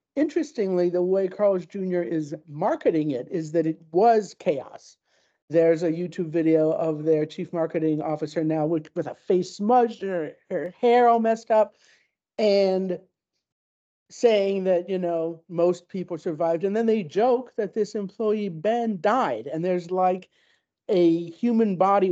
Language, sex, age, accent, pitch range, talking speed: English, male, 50-69, American, 170-225 Hz, 155 wpm